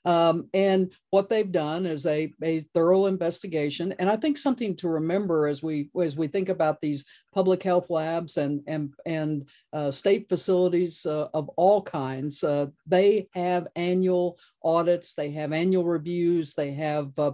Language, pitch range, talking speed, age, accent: English, 160-185 Hz, 165 wpm, 50-69, American